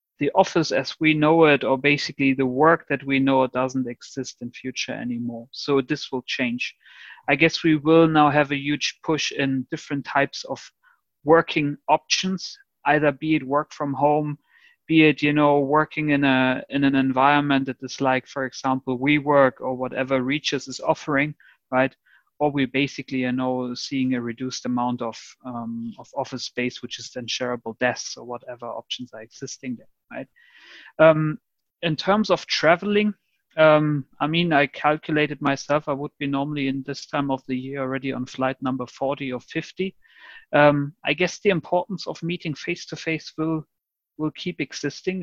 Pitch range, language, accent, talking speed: 130-150 Hz, English, German, 175 wpm